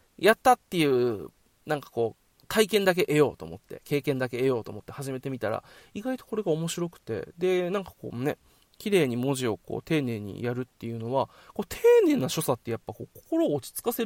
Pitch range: 120-175 Hz